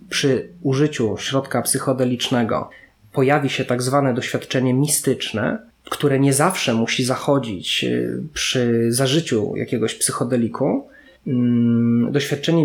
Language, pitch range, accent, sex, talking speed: Polish, 120-140 Hz, native, male, 95 wpm